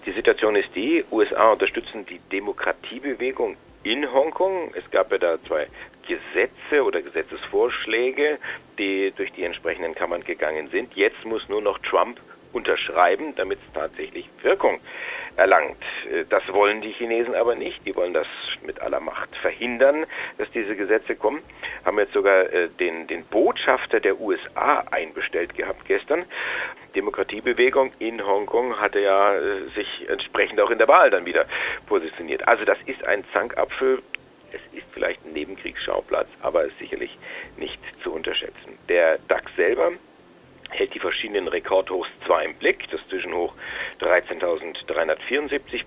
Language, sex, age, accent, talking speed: German, male, 50-69, German, 140 wpm